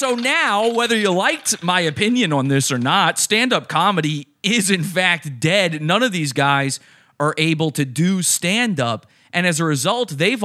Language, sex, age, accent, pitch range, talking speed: English, male, 30-49, American, 125-175 Hz, 180 wpm